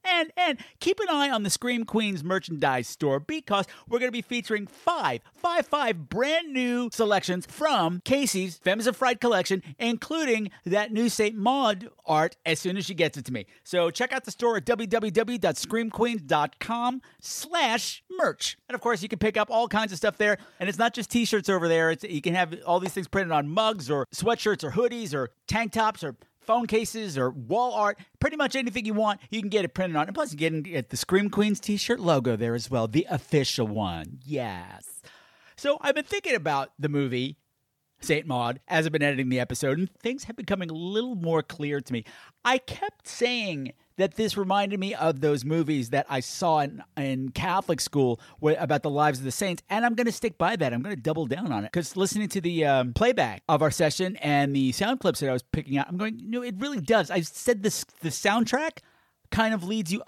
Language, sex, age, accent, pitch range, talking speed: English, male, 50-69, American, 155-230 Hz, 220 wpm